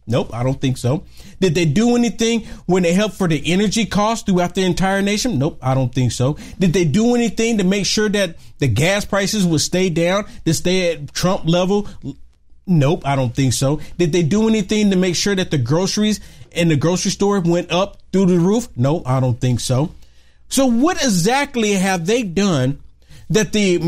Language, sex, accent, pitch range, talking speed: English, male, American, 140-200 Hz, 205 wpm